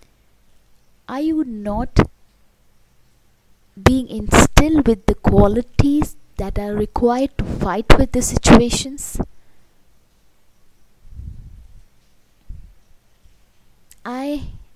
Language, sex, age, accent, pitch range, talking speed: English, female, 20-39, Indian, 190-245 Hz, 70 wpm